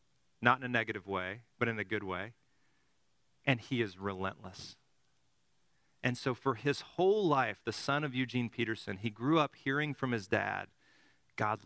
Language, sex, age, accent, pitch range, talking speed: English, male, 40-59, American, 110-135 Hz, 170 wpm